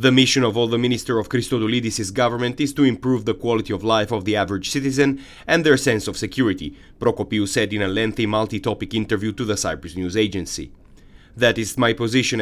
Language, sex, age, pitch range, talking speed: English, male, 30-49, 100-125 Hz, 200 wpm